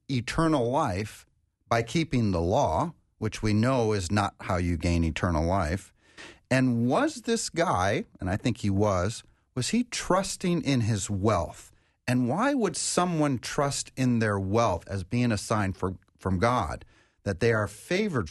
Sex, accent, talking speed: male, American, 160 wpm